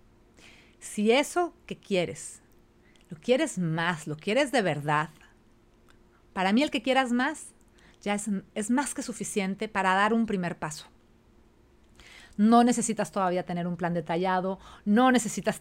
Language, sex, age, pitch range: Spanish, female, 40-59, 170-245 Hz